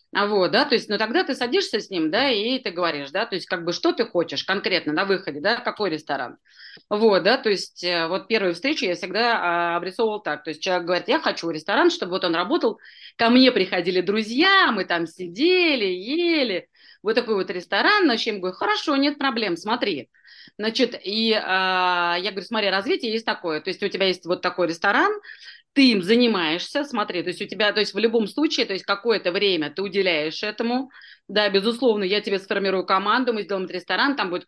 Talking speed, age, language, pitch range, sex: 200 wpm, 30-49, Russian, 180-230 Hz, female